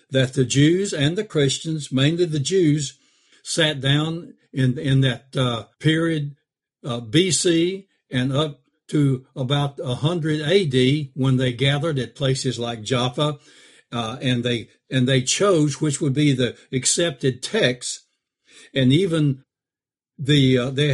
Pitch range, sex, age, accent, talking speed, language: 130-160 Hz, male, 60-79, American, 140 wpm, English